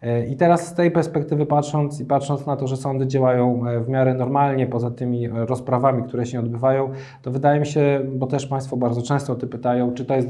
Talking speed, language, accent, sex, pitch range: 215 wpm, Polish, native, male, 120-135 Hz